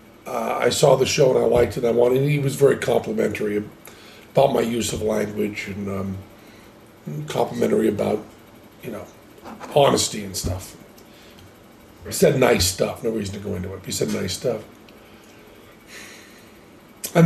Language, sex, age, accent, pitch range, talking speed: English, male, 40-59, American, 105-140 Hz, 160 wpm